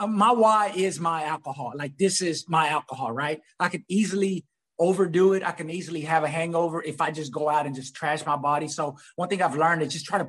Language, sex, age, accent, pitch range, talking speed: English, male, 30-49, American, 150-180 Hz, 240 wpm